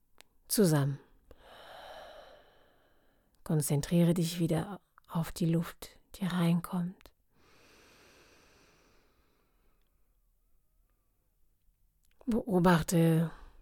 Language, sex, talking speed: German, female, 45 wpm